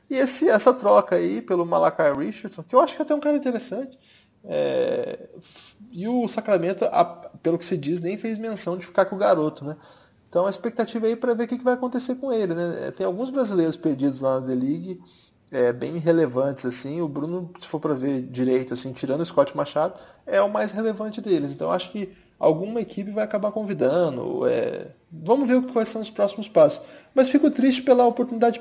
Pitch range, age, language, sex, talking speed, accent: 160-230 Hz, 20-39, Portuguese, male, 210 wpm, Brazilian